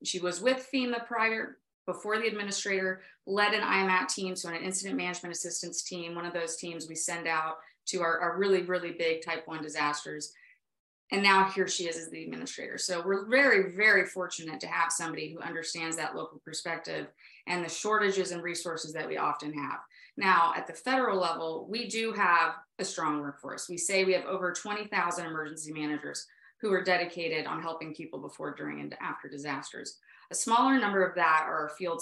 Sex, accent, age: female, American, 30-49